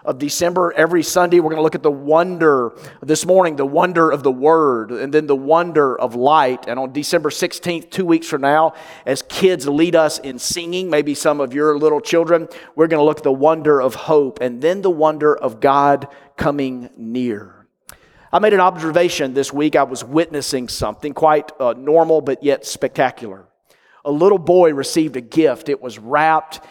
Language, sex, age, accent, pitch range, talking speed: English, male, 40-59, American, 145-175 Hz, 195 wpm